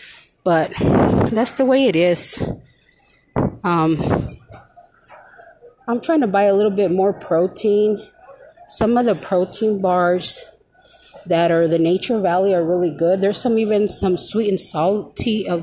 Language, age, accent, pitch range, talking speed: English, 30-49, American, 170-235 Hz, 140 wpm